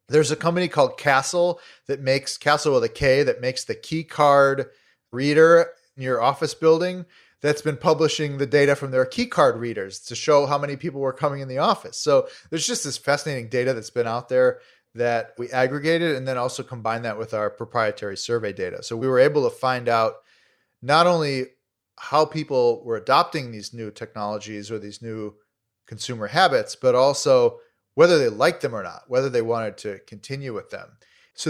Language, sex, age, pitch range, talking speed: English, male, 30-49, 125-190 Hz, 190 wpm